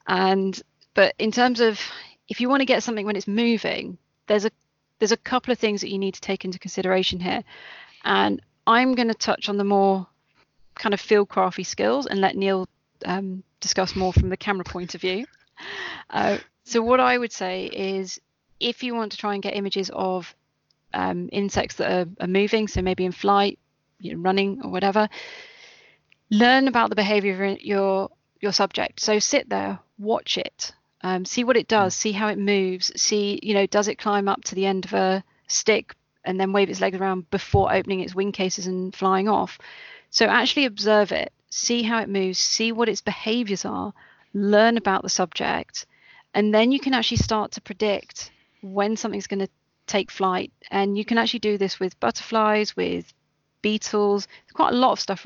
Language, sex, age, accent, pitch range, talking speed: English, female, 30-49, British, 190-220 Hz, 195 wpm